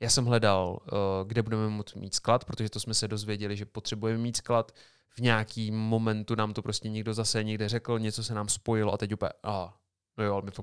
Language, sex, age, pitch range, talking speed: Slovak, male, 30-49, 105-120 Hz, 220 wpm